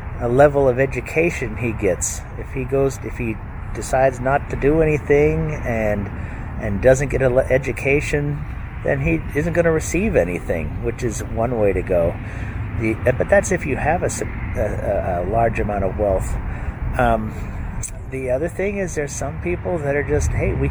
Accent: American